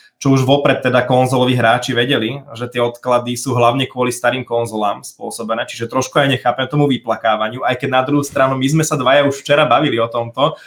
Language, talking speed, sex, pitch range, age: Slovak, 200 wpm, male, 120-140 Hz, 20-39